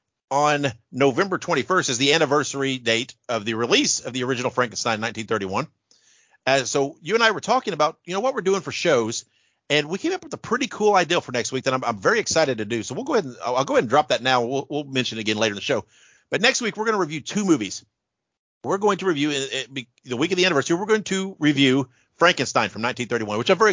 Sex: male